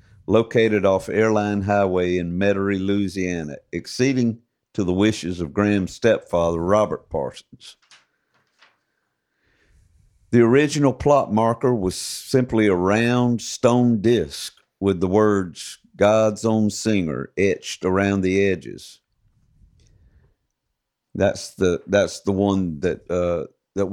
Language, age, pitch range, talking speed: English, 50-69, 90-110 Hz, 110 wpm